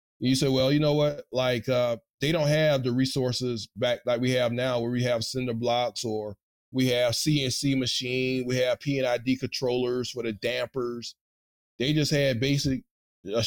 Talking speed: 185 wpm